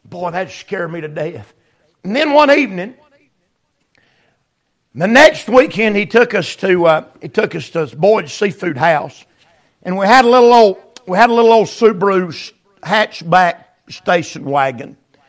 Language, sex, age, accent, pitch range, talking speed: English, male, 50-69, American, 175-220 Hz, 160 wpm